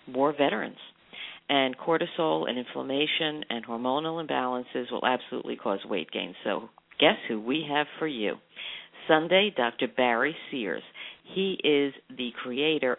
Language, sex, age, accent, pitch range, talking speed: English, female, 50-69, American, 120-155 Hz, 135 wpm